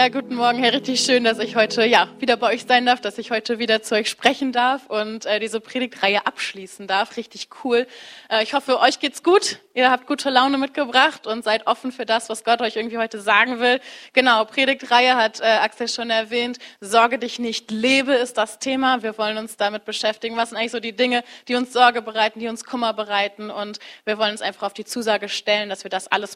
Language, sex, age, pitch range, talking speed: German, female, 20-39, 215-250 Hz, 225 wpm